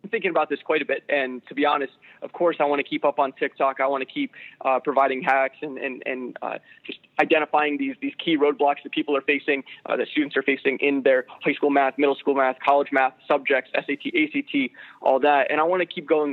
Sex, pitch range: male, 135-160 Hz